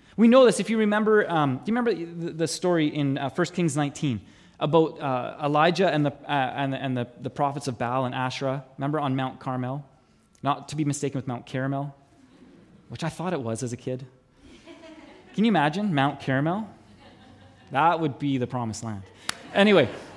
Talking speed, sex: 185 wpm, male